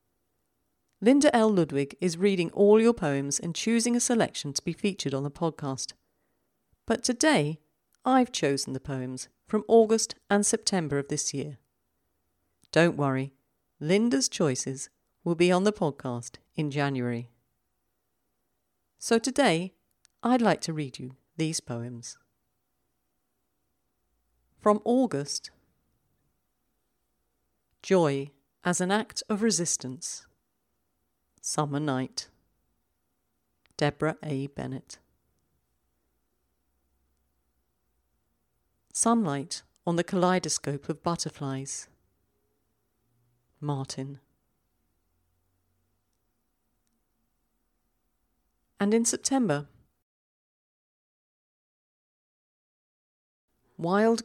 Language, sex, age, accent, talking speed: English, female, 40-59, British, 85 wpm